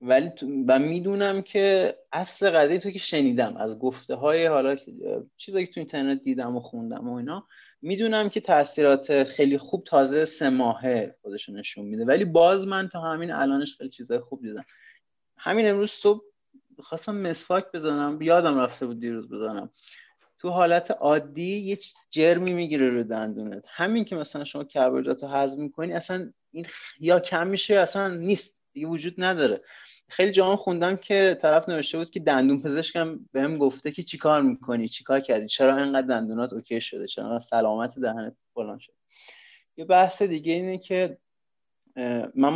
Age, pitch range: 30-49, 135-180 Hz